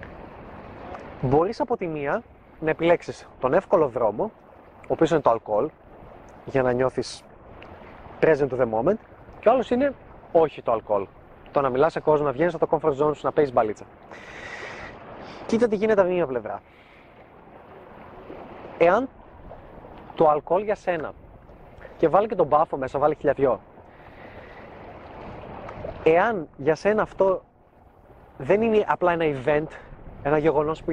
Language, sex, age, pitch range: Greek, male, 20-39, 130-175 Hz